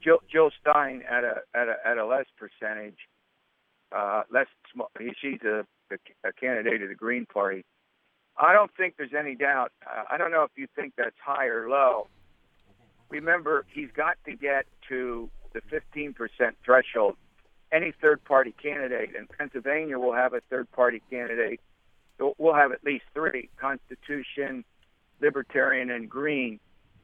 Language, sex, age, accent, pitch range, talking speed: English, male, 60-79, American, 125-155 Hz, 155 wpm